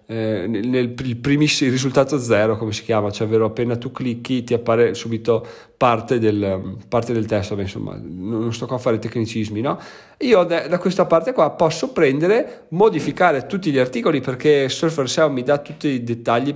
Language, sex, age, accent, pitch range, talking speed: Italian, male, 40-59, native, 115-150 Hz, 190 wpm